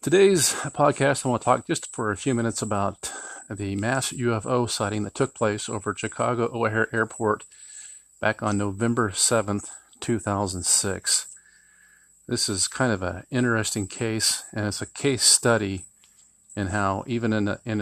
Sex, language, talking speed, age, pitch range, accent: male, English, 160 wpm, 40-59, 100-115 Hz, American